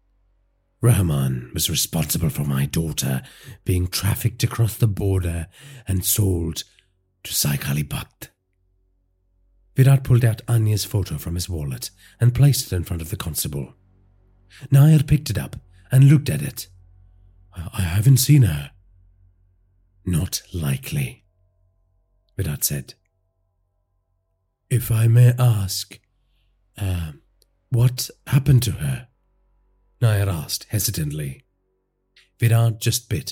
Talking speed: 110 wpm